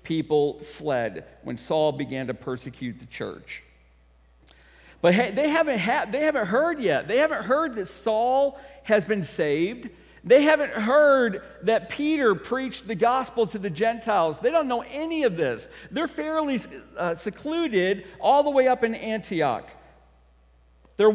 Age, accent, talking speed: 50-69, American, 145 wpm